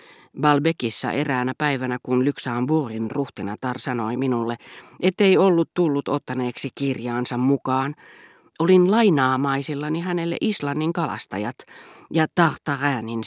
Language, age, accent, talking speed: Finnish, 40-59, native, 100 wpm